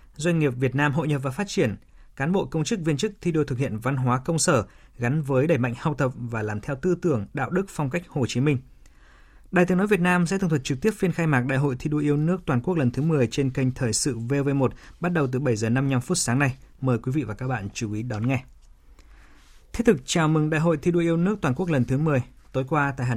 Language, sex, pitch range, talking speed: Vietnamese, male, 125-160 Hz, 280 wpm